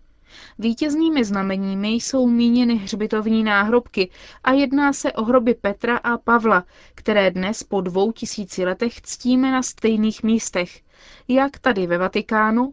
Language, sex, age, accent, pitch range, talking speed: Czech, female, 20-39, native, 200-250 Hz, 130 wpm